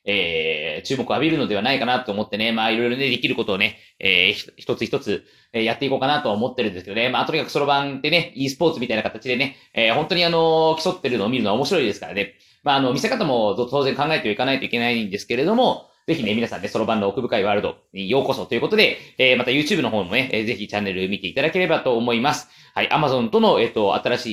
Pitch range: 105-140 Hz